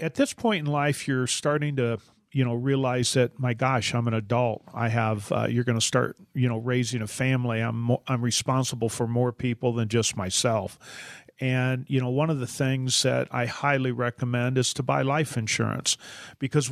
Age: 40-59